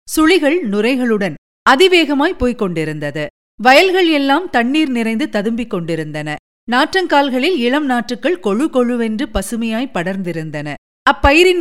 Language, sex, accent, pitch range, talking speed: Tamil, female, native, 195-280 Hz, 100 wpm